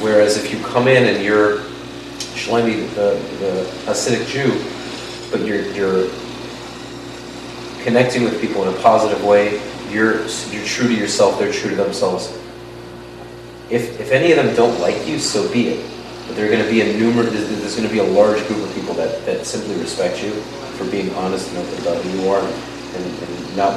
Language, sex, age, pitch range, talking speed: English, male, 30-49, 90-110 Hz, 190 wpm